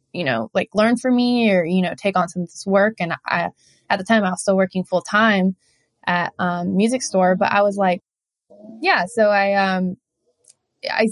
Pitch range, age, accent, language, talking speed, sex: 180-225 Hz, 20-39, American, English, 215 wpm, female